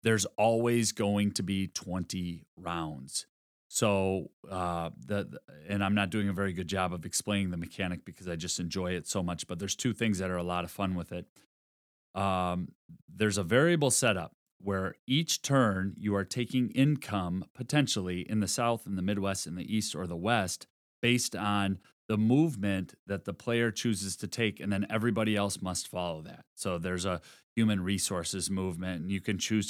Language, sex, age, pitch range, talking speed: English, male, 30-49, 90-115 Hz, 190 wpm